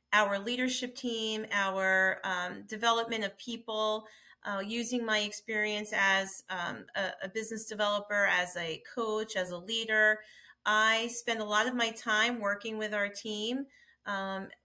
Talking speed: 150 wpm